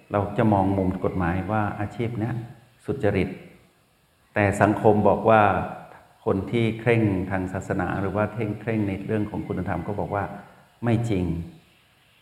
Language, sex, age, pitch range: Thai, male, 60-79, 95-115 Hz